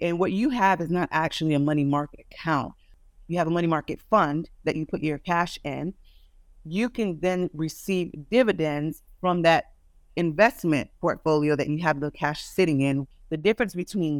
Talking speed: 180 wpm